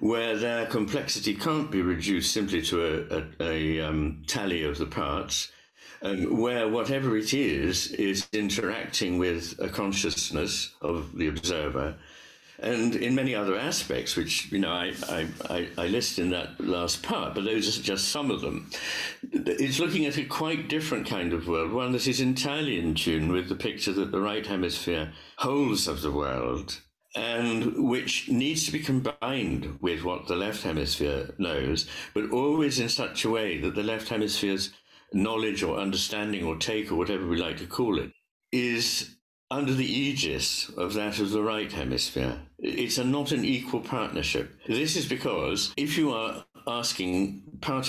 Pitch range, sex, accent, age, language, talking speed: 90-125 Hz, male, British, 60-79, English, 170 wpm